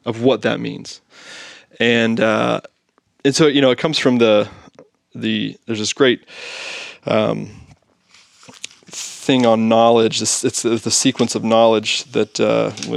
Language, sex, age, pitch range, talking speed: English, male, 20-39, 110-130 Hz, 135 wpm